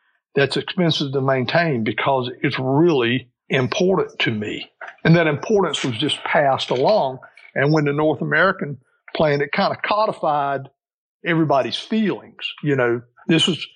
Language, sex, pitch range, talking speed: English, male, 130-170 Hz, 145 wpm